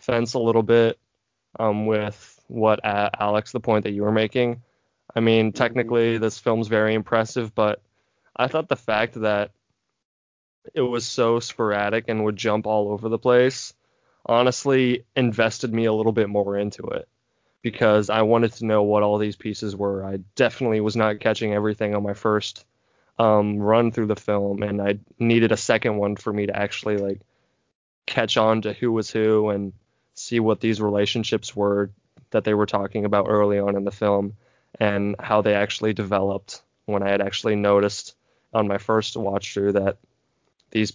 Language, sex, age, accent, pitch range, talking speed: English, male, 20-39, American, 100-115 Hz, 180 wpm